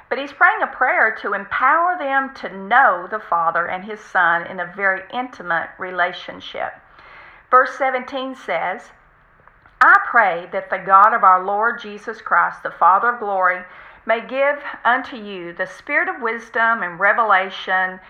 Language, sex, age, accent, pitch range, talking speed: English, female, 50-69, American, 185-235 Hz, 155 wpm